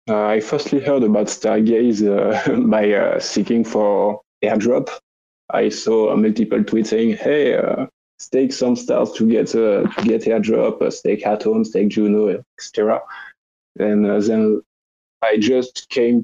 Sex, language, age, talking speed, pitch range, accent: male, English, 20-39, 150 wpm, 105-120 Hz, French